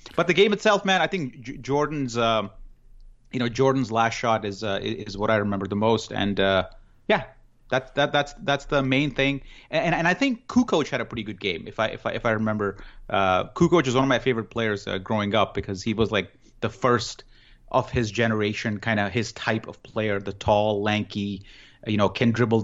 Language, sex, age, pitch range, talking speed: English, male, 30-49, 105-130 Hz, 220 wpm